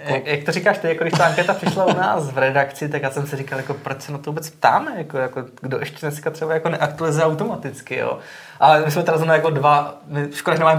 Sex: male